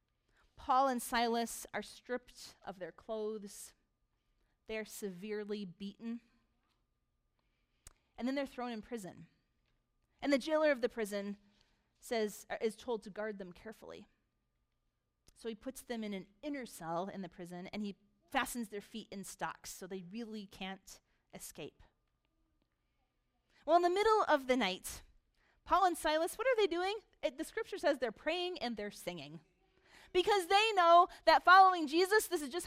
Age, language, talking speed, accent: 30-49, English, 160 wpm, American